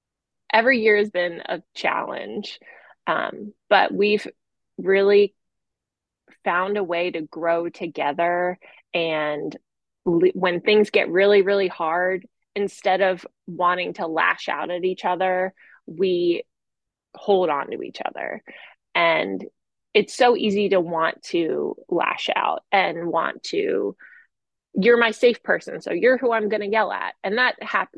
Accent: American